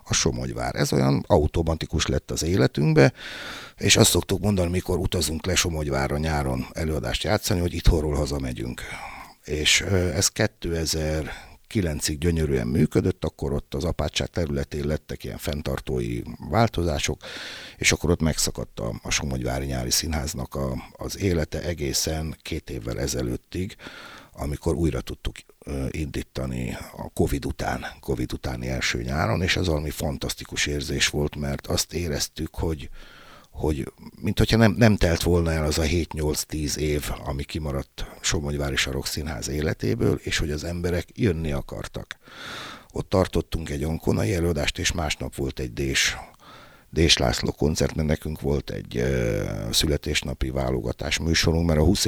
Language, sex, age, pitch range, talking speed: Hungarian, male, 60-79, 70-85 Hz, 135 wpm